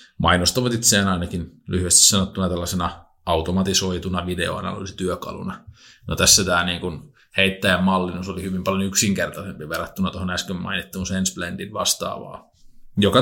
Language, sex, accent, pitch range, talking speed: Finnish, male, native, 90-110 Hz, 110 wpm